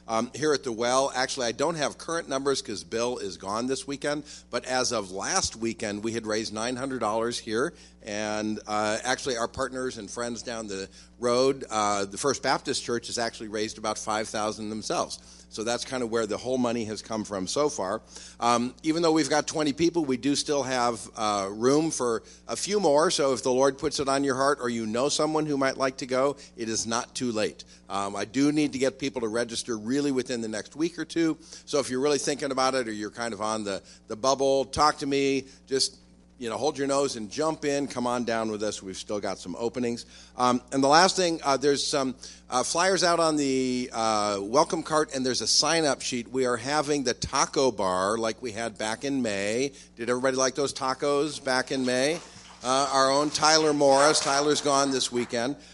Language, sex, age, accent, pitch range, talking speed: English, male, 50-69, American, 110-140 Hz, 220 wpm